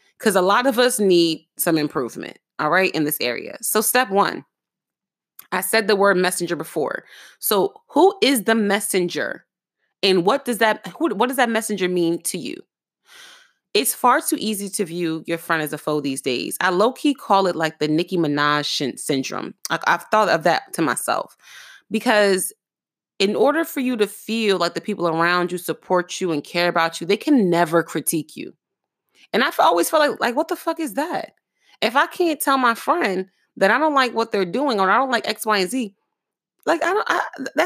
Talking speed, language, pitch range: 200 wpm, English, 180-280 Hz